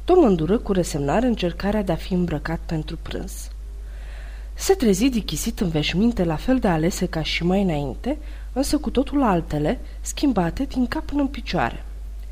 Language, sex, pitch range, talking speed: Romanian, female, 155-225 Hz, 160 wpm